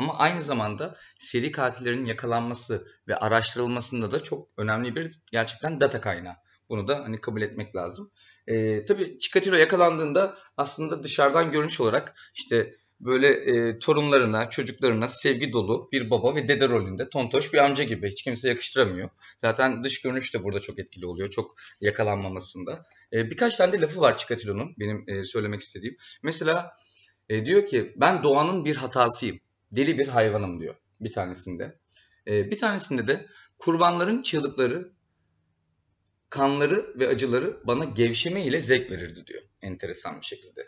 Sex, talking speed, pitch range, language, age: male, 145 wpm, 105-145 Hz, Turkish, 30-49